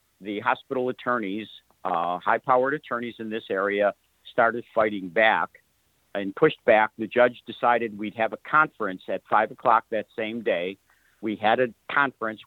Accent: American